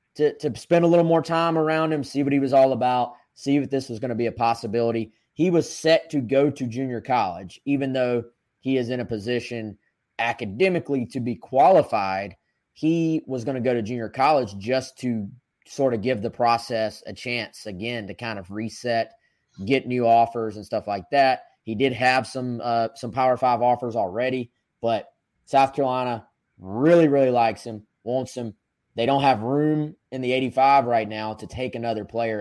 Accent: American